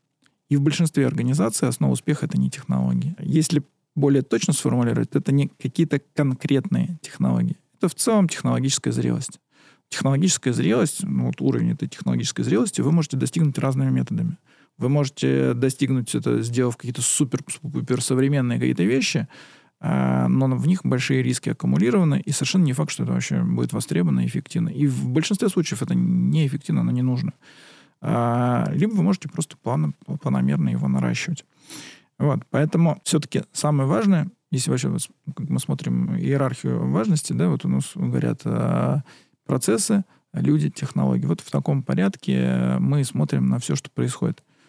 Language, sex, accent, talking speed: Russian, male, native, 145 wpm